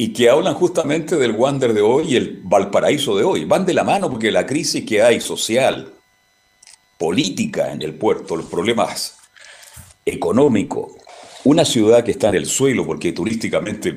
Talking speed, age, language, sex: 170 wpm, 50-69, Spanish, male